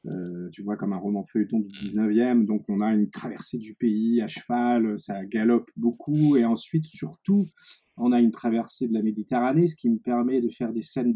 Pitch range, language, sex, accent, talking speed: 110-140 Hz, French, male, French, 215 wpm